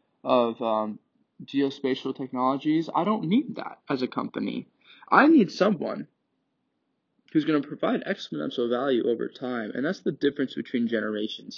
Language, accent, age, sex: English, American, 20-39, male